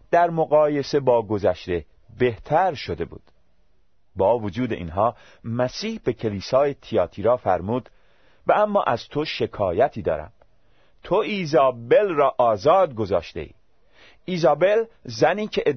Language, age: Persian, 40-59